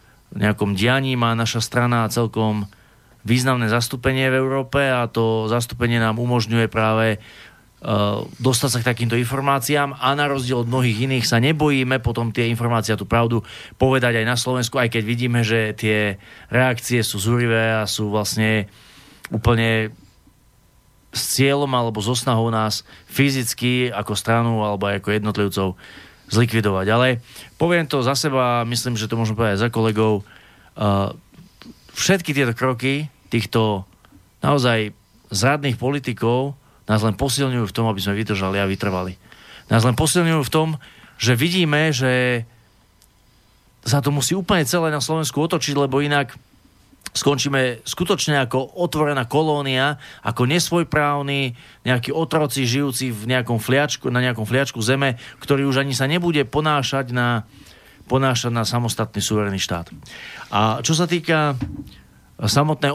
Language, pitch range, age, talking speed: Slovak, 110-135 Hz, 30-49, 140 wpm